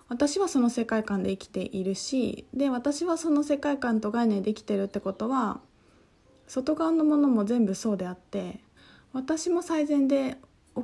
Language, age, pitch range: Japanese, 20-39, 200-275 Hz